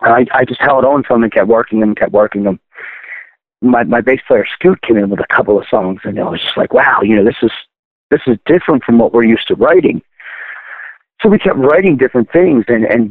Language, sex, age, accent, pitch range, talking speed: English, male, 50-69, American, 110-130 Hz, 245 wpm